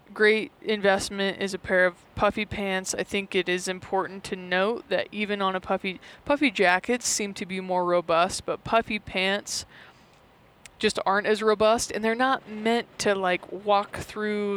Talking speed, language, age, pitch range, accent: 175 wpm, English, 20-39, 185-215 Hz, American